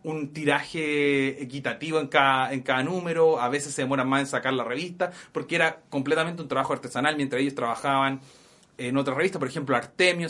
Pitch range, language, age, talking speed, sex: 135-160 Hz, Spanish, 30-49, 185 wpm, male